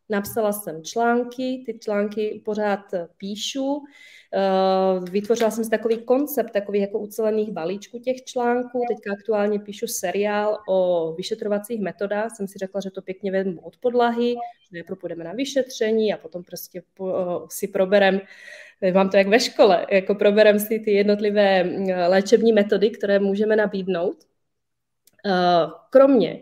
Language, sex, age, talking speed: Czech, female, 20-39, 135 wpm